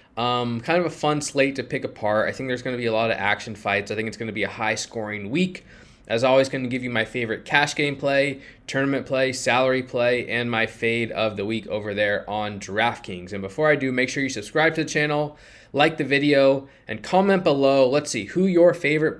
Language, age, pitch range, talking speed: English, 20-39, 105-135 Hz, 240 wpm